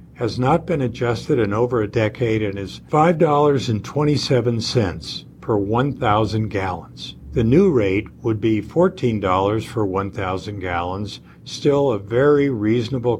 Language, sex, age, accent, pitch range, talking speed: English, male, 50-69, American, 100-130 Hz, 125 wpm